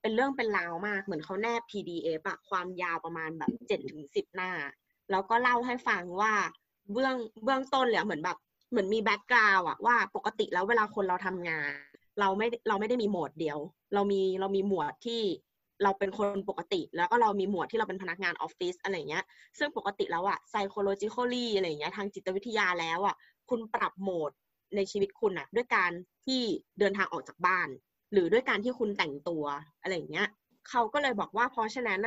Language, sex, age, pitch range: Thai, female, 20-39, 180-235 Hz